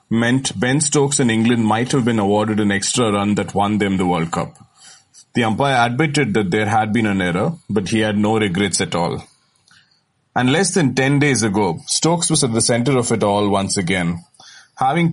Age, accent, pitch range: 30-49, Indian, 105-130 Hz